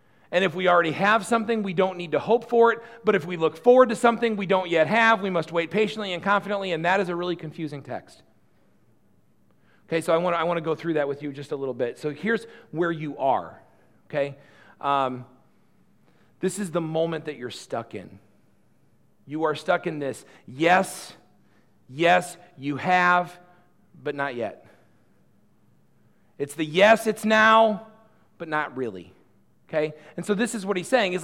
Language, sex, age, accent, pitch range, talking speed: English, male, 40-59, American, 165-230 Hz, 185 wpm